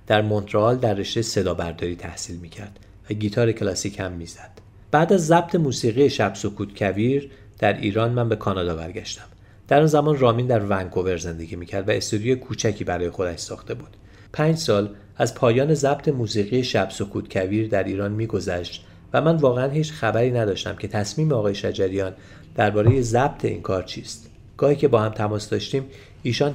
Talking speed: 175 wpm